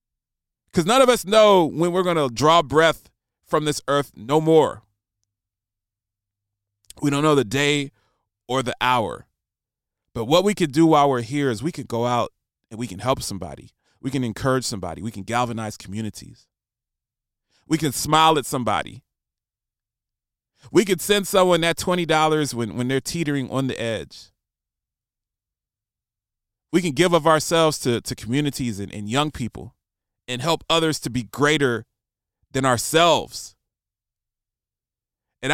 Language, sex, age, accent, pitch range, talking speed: English, male, 30-49, American, 100-140 Hz, 150 wpm